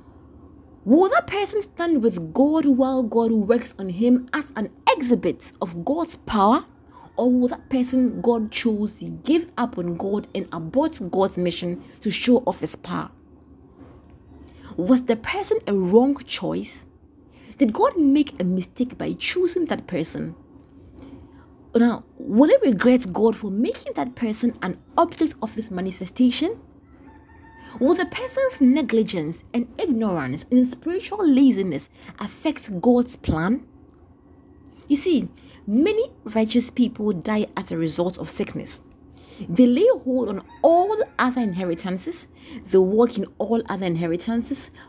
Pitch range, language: 190-275 Hz, English